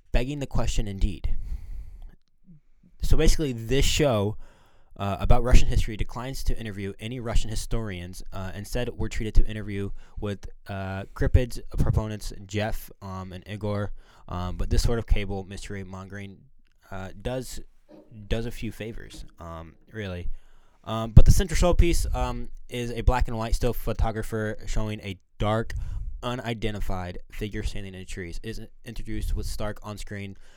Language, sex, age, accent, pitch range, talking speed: English, male, 20-39, American, 95-115 Hz, 150 wpm